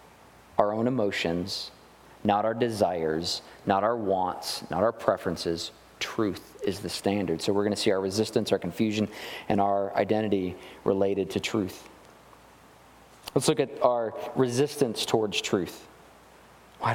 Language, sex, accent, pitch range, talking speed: English, male, American, 105-130 Hz, 140 wpm